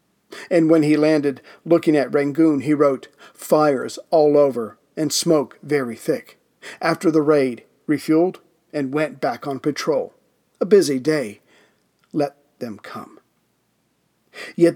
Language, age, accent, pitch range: English, 40-59, American, 140-165 Hz